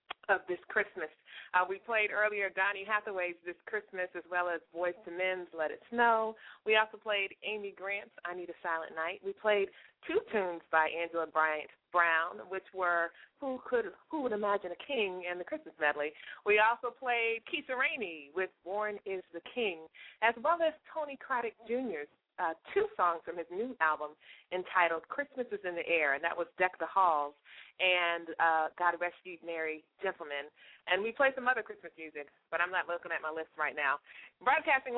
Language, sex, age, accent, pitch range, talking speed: English, female, 30-49, American, 165-220 Hz, 185 wpm